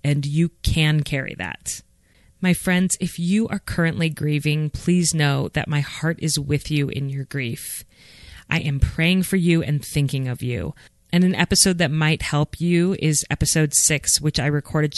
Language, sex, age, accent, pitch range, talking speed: English, female, 30-49, American, 135-165 Hz, 180 wpm